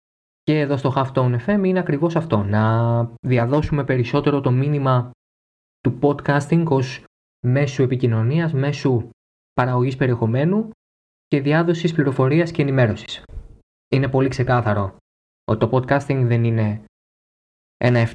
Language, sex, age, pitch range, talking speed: Greek, male, 20-39, 105-140 Hz, 115 wpm